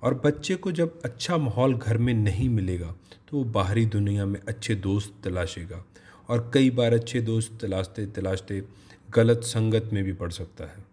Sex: male